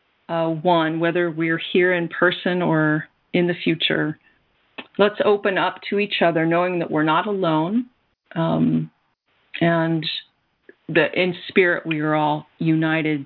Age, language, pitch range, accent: 40-59, English, 165-205 Hz, American